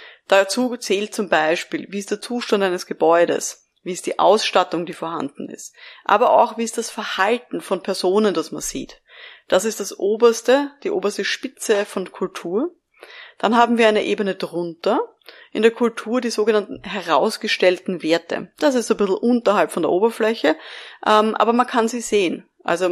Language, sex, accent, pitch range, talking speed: German, female, German, 185-235 Hz, 170 wpm